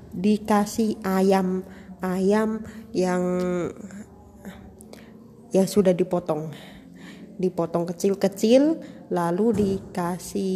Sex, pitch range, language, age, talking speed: female, 180-210 Hz, Indonesian, 20-39, 70 wpm